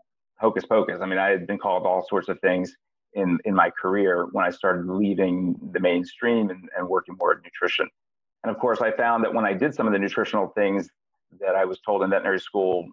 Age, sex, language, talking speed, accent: 40-59, male, English, 225 wpm, American